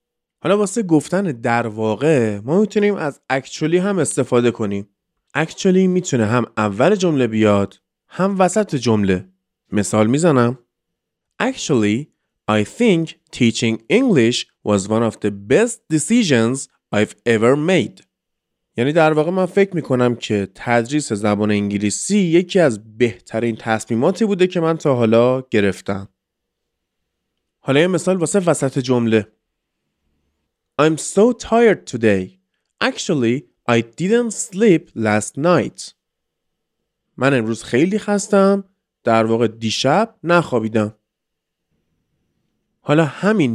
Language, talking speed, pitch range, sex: Persian, 115 wpm, 110-175 Hz, male